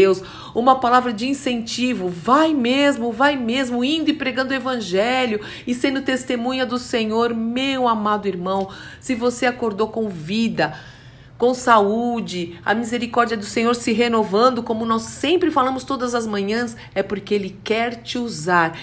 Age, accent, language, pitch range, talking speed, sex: 50-69, Brazilian, Portuguese, 190-245 Hz, 150 wpm, female